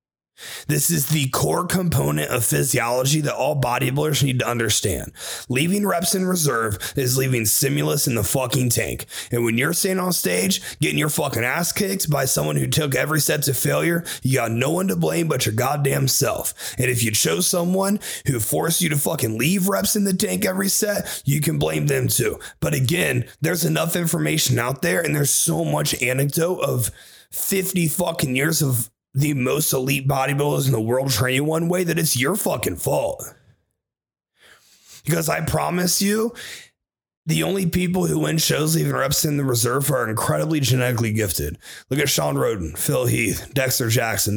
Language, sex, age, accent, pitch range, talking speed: English, male, 30-49, American, 120-170 Hz, 185 wpm